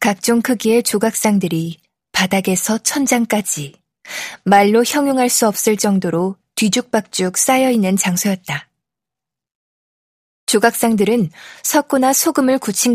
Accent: native